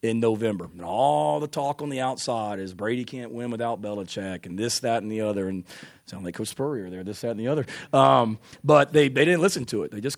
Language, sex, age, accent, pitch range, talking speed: English, male, 30-49, American, 100-120 Hz, 250 wpm